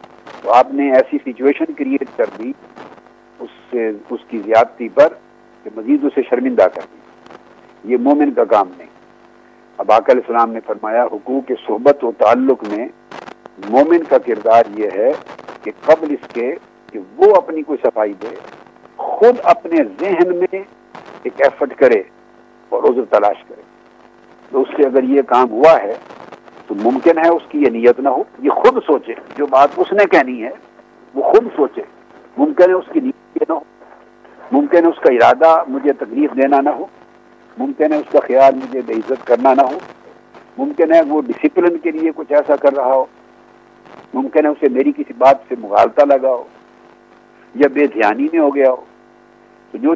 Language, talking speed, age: Urdu, 180 wpm, 60-79